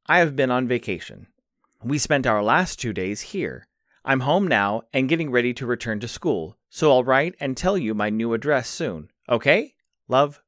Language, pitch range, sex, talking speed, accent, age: English, 105-150 Hz, male, 195 wpm, American, 30-49